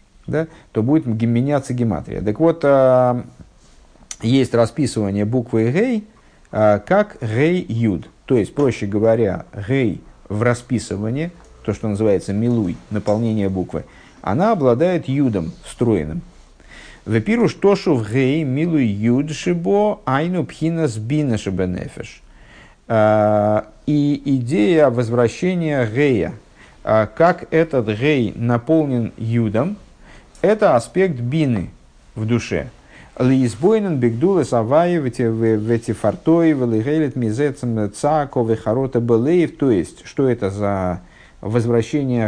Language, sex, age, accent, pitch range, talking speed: Russian, male, 50-69, native, 110-145 Hz, 90 wpm